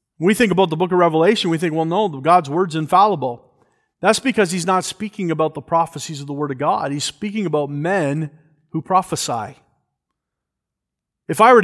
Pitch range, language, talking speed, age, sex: 145-185 Hz, English, 185 wpm, 40-59, male